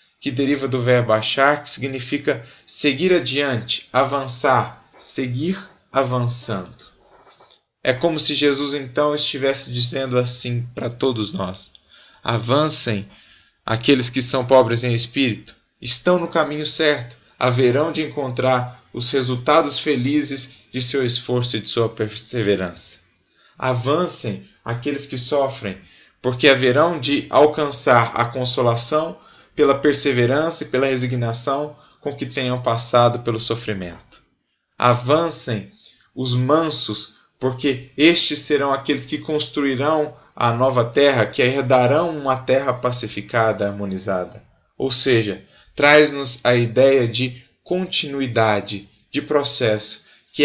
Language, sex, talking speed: Portuguese, male, 115 wpm